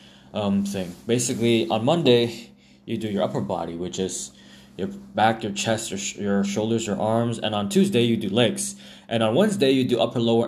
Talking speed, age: 195 wpm, 20-39